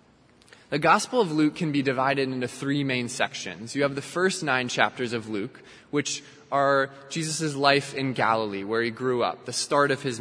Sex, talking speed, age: male, 195 wpm, 20-39